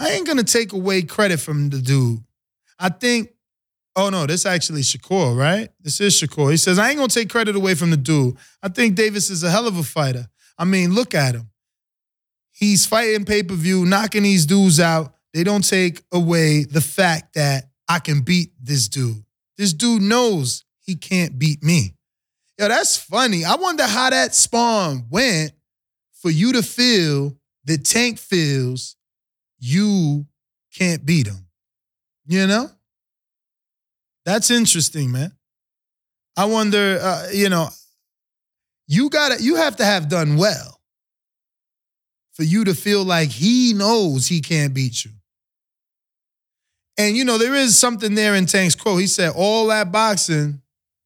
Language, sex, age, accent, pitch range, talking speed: English, male, 20-39, American, 145-210 Hz, 160 wpm